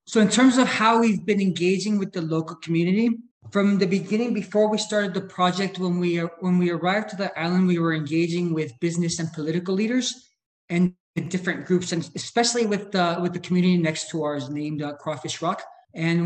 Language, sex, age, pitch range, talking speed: English, male, 20-39, 165-195 Hz, 200 wpm